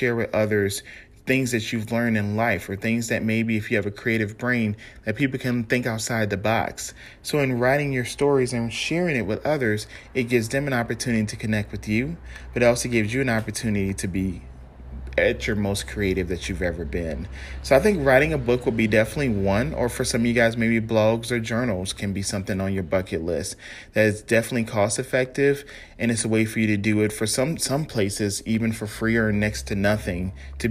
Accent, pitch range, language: American, 105-125 Hz, English